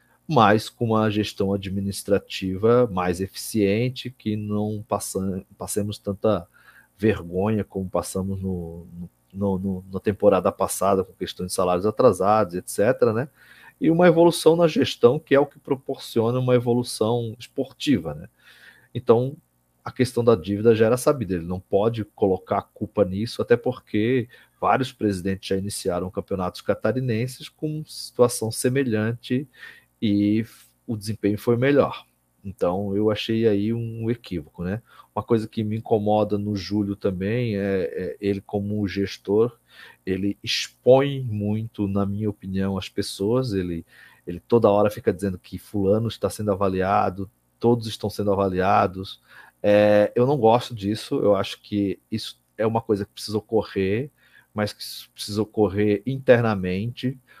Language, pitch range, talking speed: Portuguese, 95-115 Hz, 140 wpm